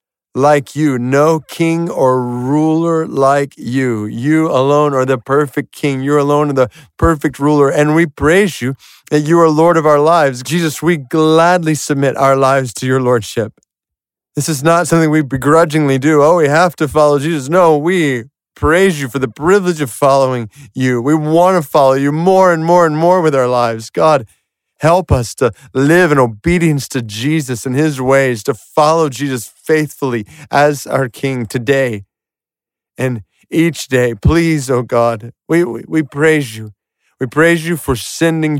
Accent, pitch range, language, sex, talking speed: American, 125-155 Hz, English, male, 175 wpm